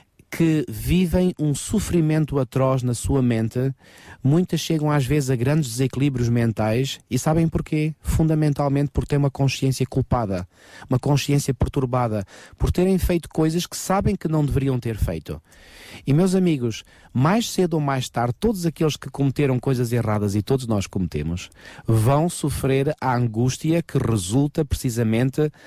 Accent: Portuguese